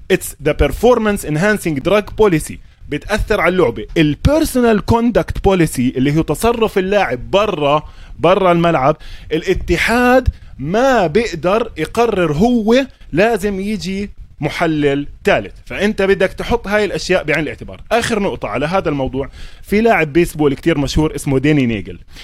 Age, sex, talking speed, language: 20-39, male, 120 wpm, Arabic